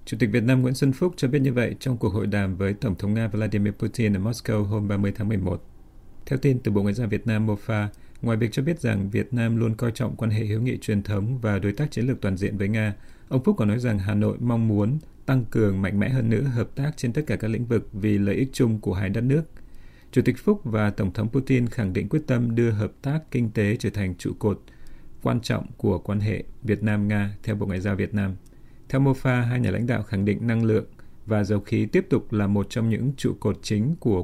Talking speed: 260 wpm